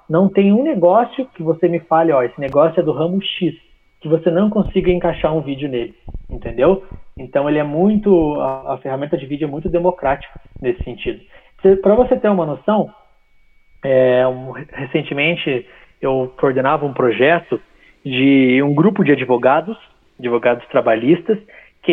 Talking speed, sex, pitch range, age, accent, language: 160 wpm, male, 140-190 Hz, 20-39, Brazilian, Portuguese